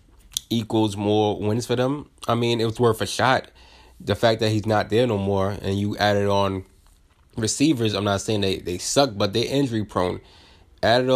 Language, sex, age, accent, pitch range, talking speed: English, male, 20-39, American, 95-120 Hz, 195 wpm